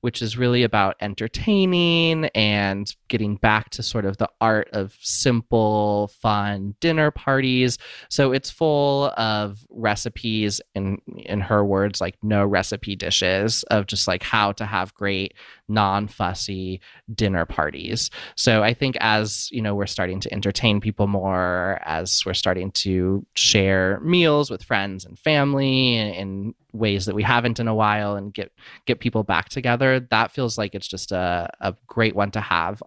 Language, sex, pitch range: English, male, 100-120 Hz